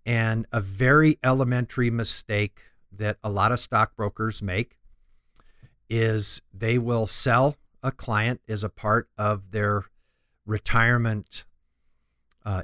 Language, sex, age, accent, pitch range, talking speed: English, male, 50-69, American, 105-125 Hz, 115 wpm